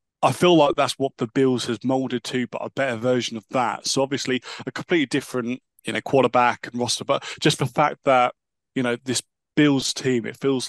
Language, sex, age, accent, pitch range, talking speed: English, male, 20-39, British, 115-135 Hz, 215 wpm